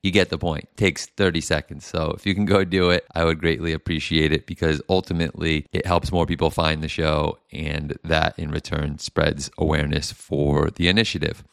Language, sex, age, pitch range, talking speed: English, male, 30-49, 80-90 Hz, 200 wpm